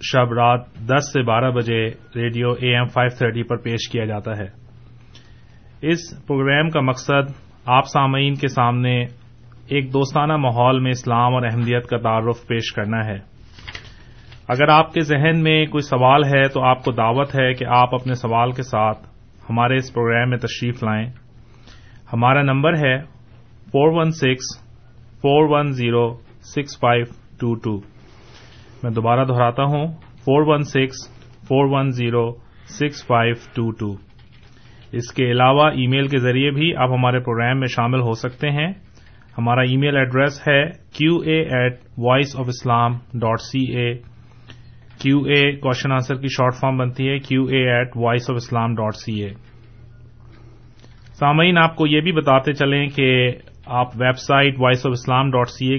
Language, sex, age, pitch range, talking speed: Urdu, male, 30-49, 120-135 Hz, 125 wpm